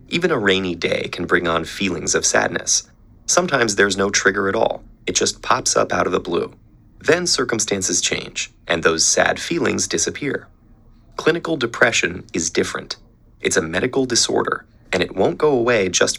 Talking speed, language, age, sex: 170 wpm, English, 30-49, male